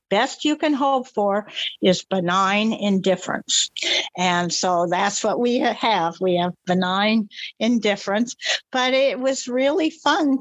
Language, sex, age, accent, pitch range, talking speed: English, female, 50-69, American, 180-220 Hz, 135 wpm